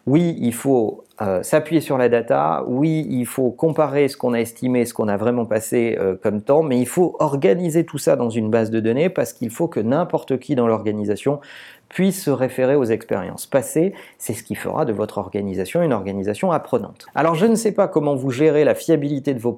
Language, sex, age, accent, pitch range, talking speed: French, male, 40-59, French, 110-155 Hz, 220 wpm